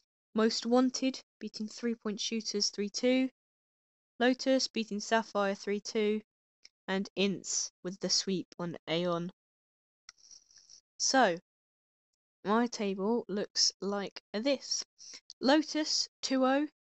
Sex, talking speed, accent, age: female, 90 wpm, British, 10-29